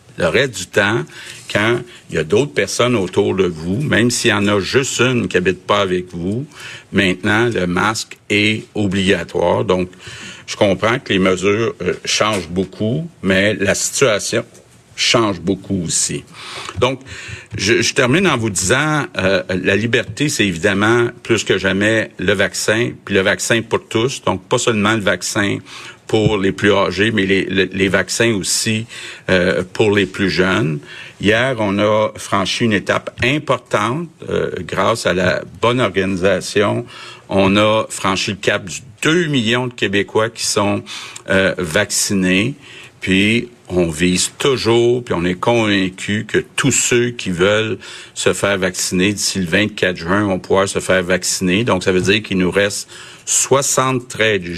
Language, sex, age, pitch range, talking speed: French, male, 60-79, 95-115 Hz, 165 wpm